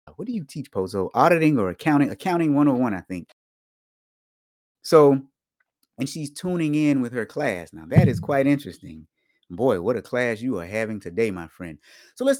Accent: American